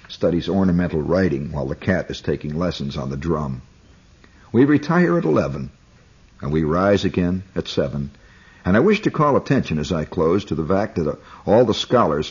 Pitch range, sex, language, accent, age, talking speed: 75-110 Hz, male, English, American, 60-79, 185 wpm